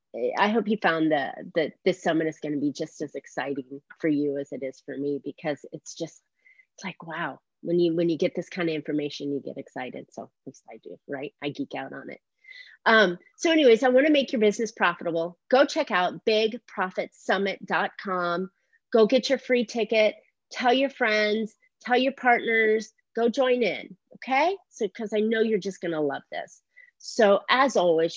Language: English